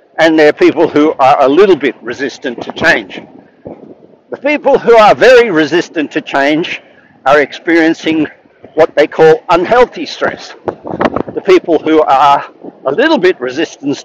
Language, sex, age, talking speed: English, male, 60-79, 145 wpm